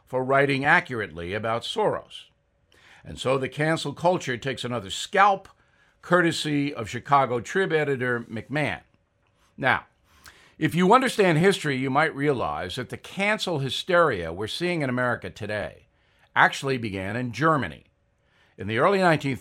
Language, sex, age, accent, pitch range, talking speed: English, male, 60-79, American, 125-175 Hz, 135 wpm